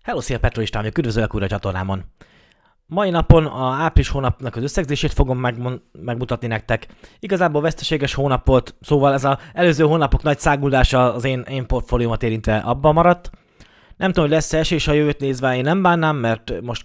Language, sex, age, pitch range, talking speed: Hungarian, male, 20-39, 115-145 Hz, 180 wpm